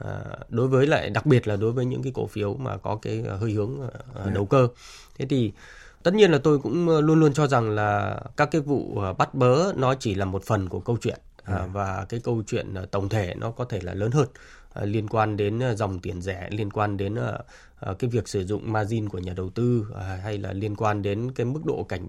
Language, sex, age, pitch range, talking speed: Vietnamese, male, 20-39, 100-125 Hz, 225 wpm